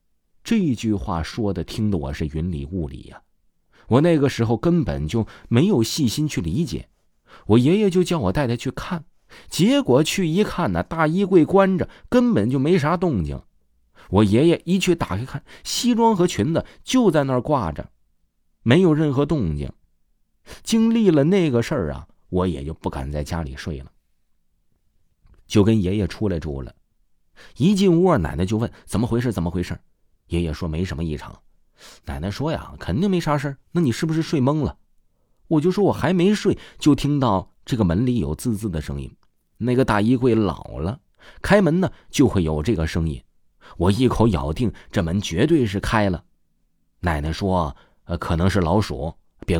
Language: Chinese